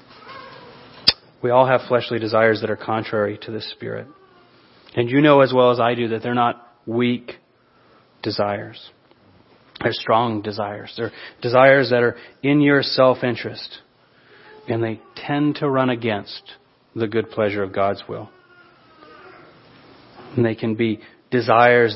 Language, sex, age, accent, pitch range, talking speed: English, male, 30-49, American, 115-140 Hz, 140 wpm